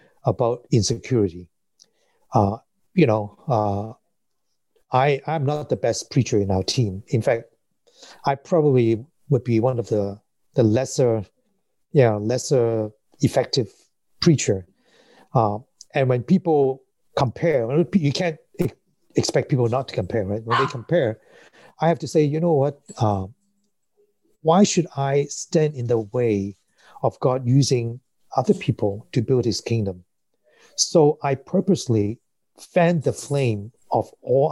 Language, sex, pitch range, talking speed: English, male, 110-150 Hz, 135 wpm